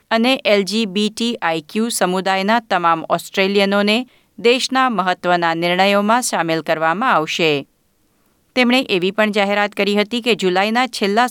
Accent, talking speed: native, 105 wpm